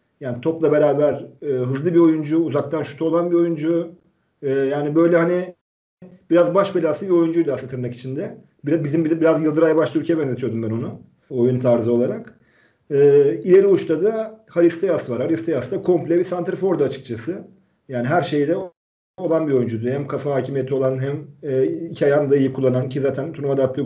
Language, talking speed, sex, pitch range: Turkish, 175 wpm, male, 130-170 Hz